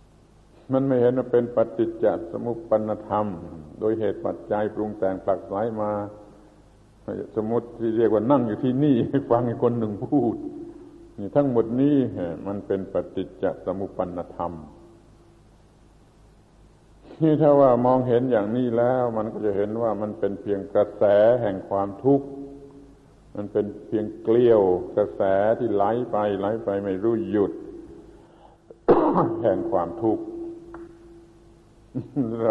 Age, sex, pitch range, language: 60-79, male, 105-130 Hz, Thai